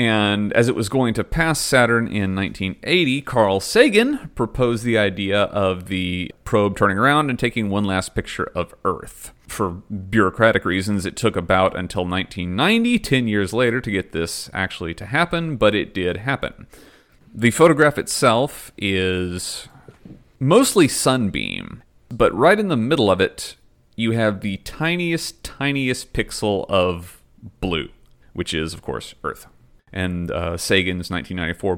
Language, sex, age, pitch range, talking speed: English, male, 30-49, 95-130 Hz, 145 wpm